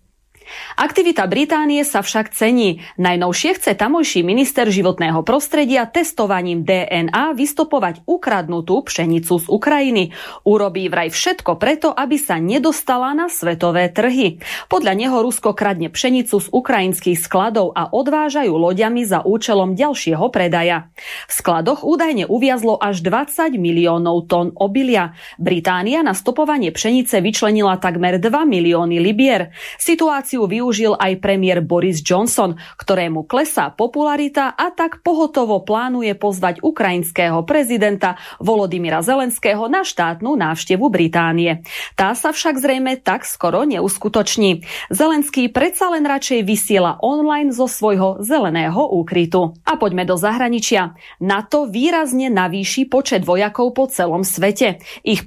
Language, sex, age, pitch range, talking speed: Slovak, female, 30-49, 180-275 Hz, 125 wpm